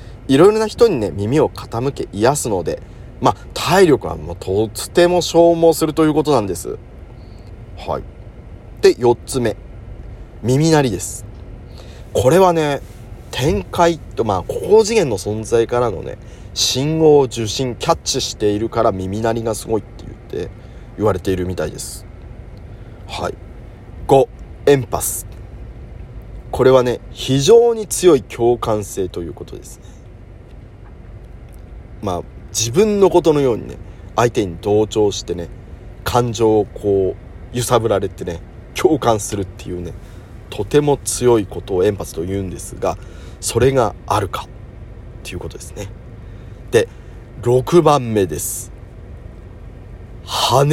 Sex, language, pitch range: male, Japanese, 95-125 Hz